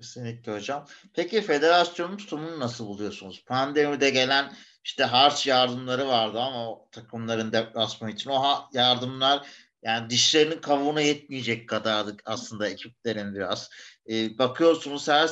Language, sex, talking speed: Turkish, male, 120 wpm